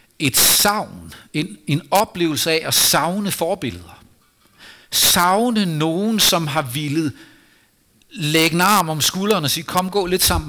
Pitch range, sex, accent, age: 115-160 Hz, male, native, 60-79